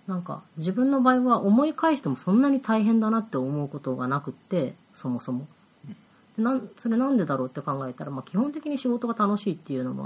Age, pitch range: 30-49, 140-210 Hz